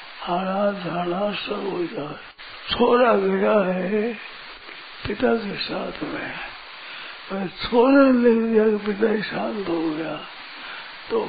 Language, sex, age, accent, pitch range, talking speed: Hindi, male, 60-79, native, 205-250 Hz, 110 wpm